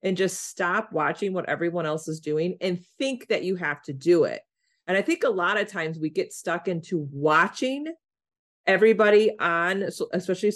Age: 30-49